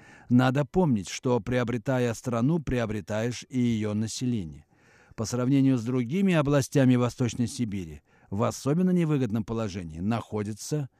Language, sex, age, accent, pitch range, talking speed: Russian, male, 50-69, native, 110-140 Hz, 115 wpm